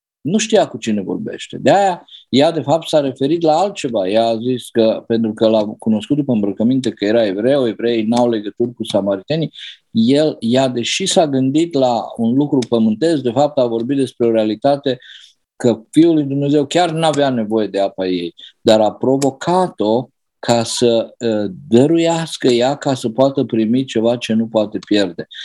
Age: 50-69